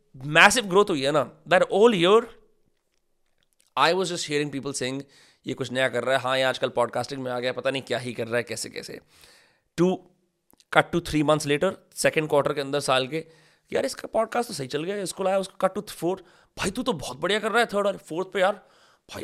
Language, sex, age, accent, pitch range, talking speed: English, male, 30-49, Indian, 130-180 Hz, 115 wpm